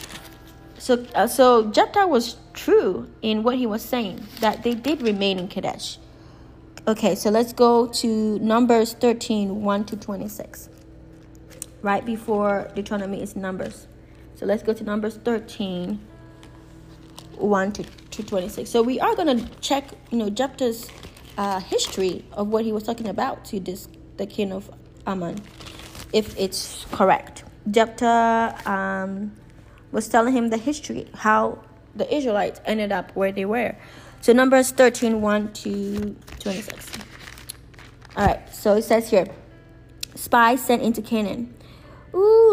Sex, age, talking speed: female, 20-39, 140 wpm